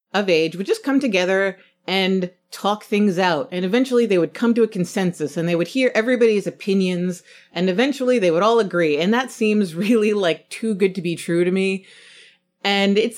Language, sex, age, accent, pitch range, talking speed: English, female, 30-49, American, 165-215 Hz, 200 wpm